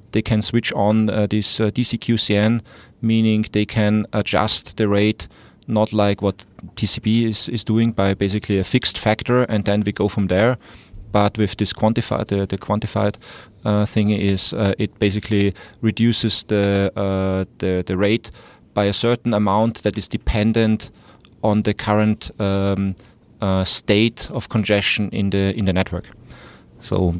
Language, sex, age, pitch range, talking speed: English, male, 30-49, 100-110 Hz, 160 wpm